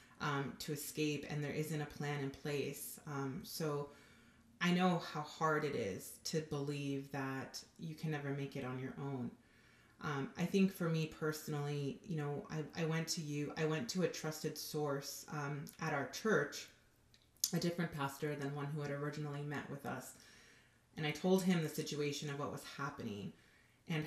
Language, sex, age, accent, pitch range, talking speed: English, female, 30-49, American, 140-160 Hz, 185 wpm